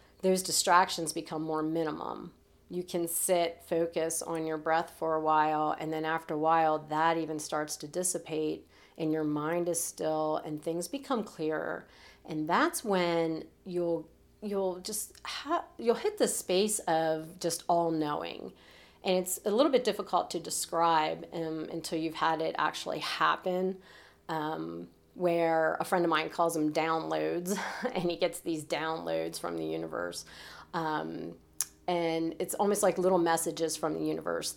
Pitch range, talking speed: 155-175 Hz, 160 wpm